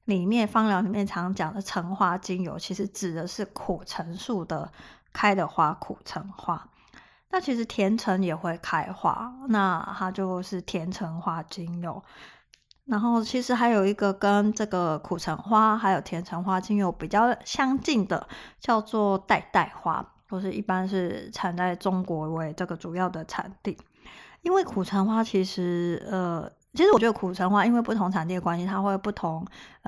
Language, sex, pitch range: Chinese, female, 180-215 Hz